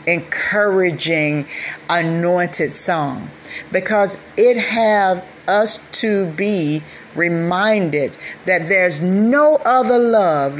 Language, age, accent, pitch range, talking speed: English, 50-69, American, 175-250 Hz, 85 wpm